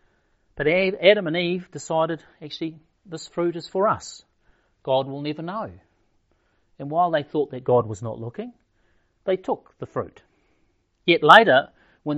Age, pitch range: 40-59, 115-155 Hz